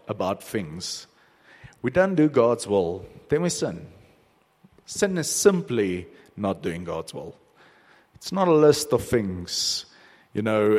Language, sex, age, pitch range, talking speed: English, male, 50-69, 115-165 Hz, 140 wpm